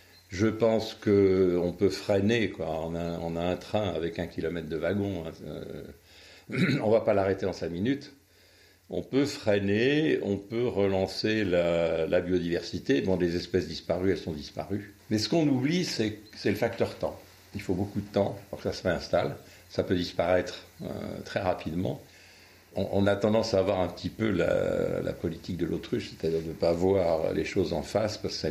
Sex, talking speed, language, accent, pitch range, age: male, 195 wpm, French, French, 90-110 Hz, 60-79